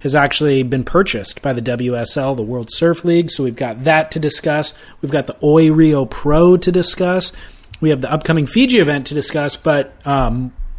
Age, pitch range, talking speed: 30-49, 120-150 Hz, 190 wpm